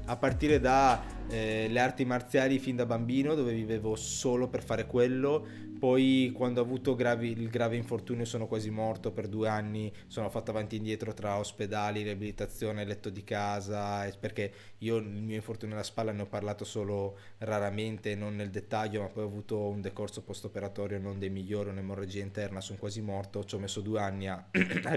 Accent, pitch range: native, 105-130 Hz